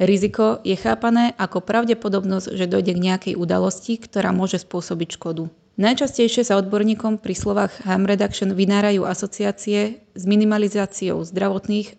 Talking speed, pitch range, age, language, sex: 130 wpm, 185-210 Hz, 20-39, Slovak, female